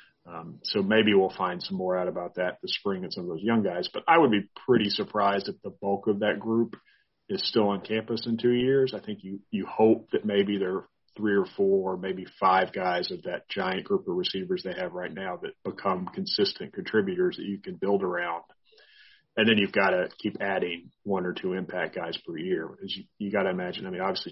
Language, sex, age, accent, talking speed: English, male, 40-59, American, 230 wpm